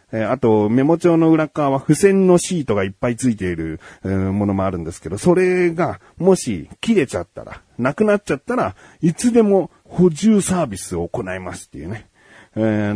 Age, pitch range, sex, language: 40-59, 95-150 Hz, male, Japanese